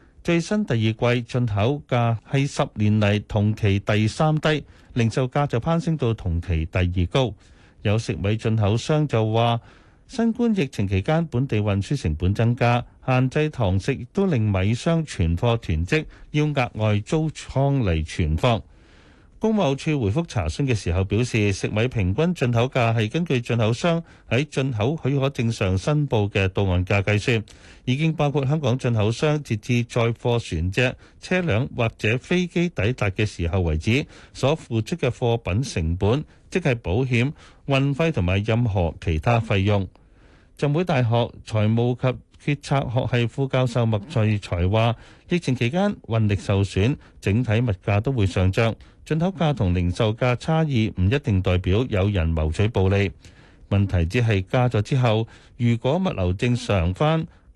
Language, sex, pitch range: Chinese, male, 100-135 Hz